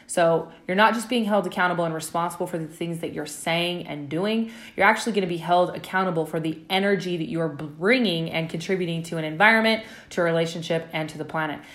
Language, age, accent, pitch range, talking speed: English, 20-39, American, 165-195 Hz, 210 wpm